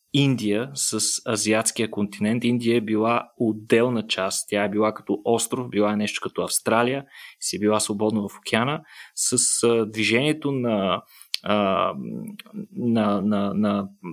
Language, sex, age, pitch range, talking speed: Bulgarian, male, 20-39, 110-135 Hz, 125 wpm